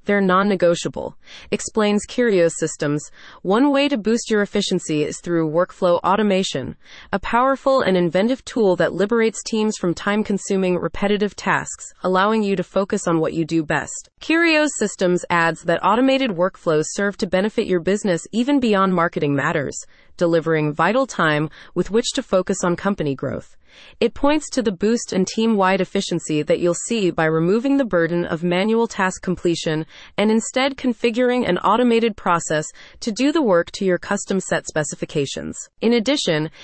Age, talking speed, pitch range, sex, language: 30-49, 160 wpm, 170-230 Hz, female, English